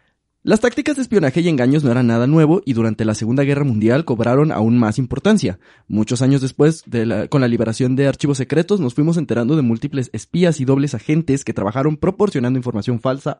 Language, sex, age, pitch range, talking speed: Spanish, male, 20-39, 120-160 Hz, 195 wpm